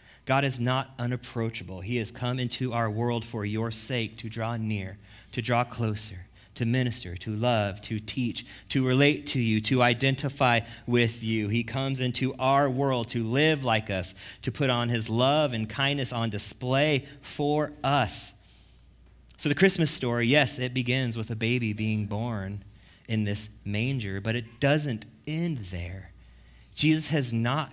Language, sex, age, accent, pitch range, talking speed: English, male, 30-49, American, 105-130 Hz, 165 wpm